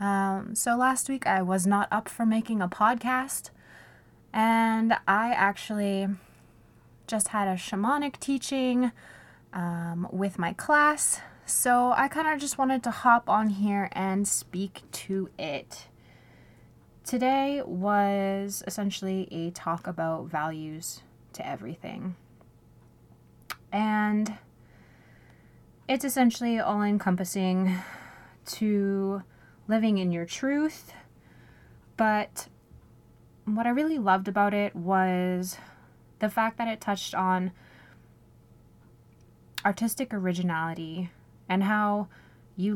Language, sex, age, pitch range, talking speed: English, female, 20-39, 180-225 Hz, 105 wpm